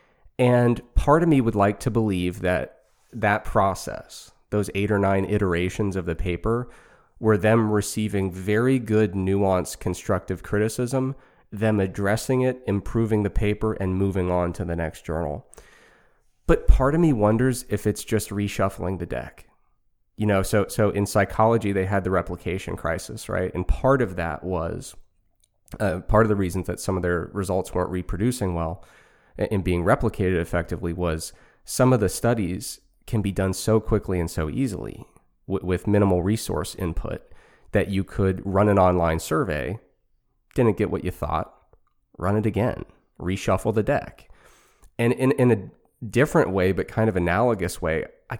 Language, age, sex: English, 20-39, male